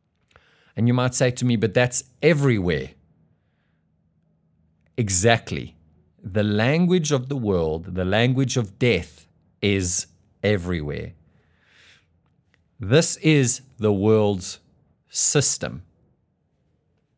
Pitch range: 90-125 Hz